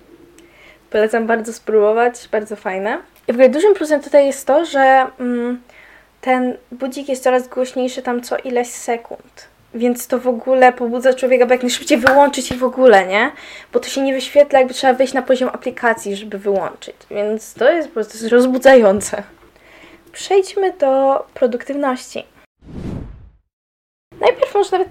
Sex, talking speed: female, 150 wpm